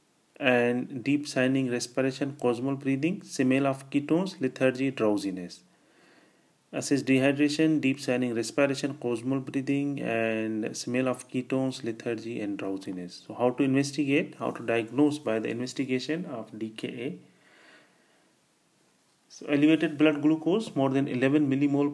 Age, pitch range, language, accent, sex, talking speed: 40-59, 110-140 Hz, English, Indian, male, 120 wpm